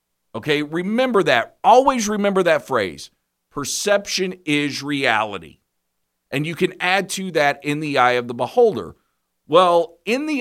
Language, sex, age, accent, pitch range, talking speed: English, male, 50-69, American, 110-170 Hz, 145 wpm